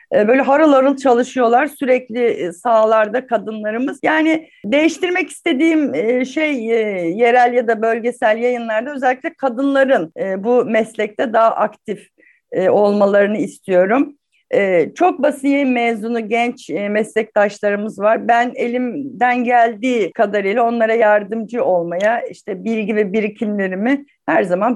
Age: 50-69